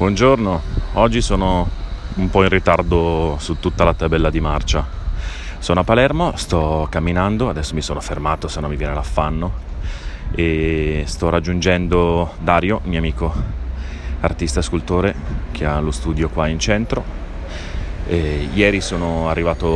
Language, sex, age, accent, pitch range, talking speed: Italian, male, 30-49, native, 75-90 Hz, 135 wpm